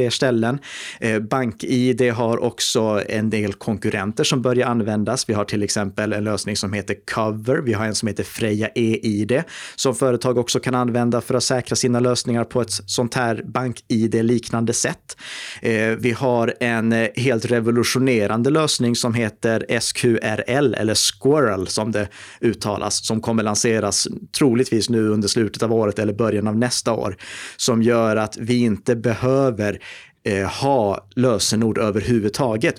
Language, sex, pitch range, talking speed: Swedish, male, 105-125 Hz, 145 wpm